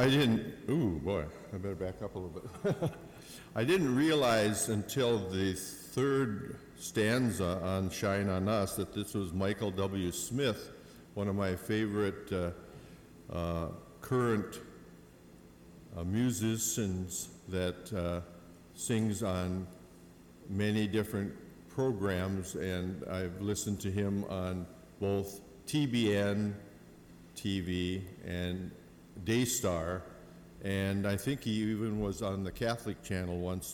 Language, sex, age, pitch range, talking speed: English, male, 60-79, 90-110 Hz, 115 wpm